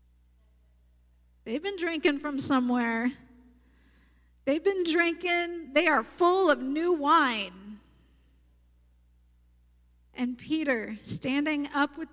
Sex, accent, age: female, American, 50-69